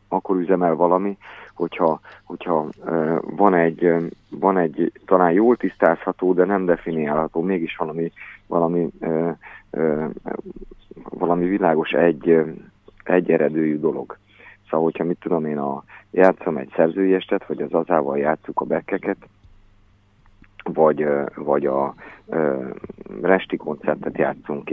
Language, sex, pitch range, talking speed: Hungarian, male, 80-95 Hz, 115 wpm